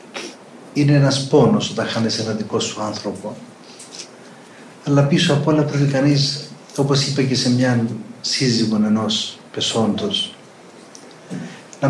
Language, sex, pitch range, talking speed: Greek, male, 120-145 Hz, 120 wpm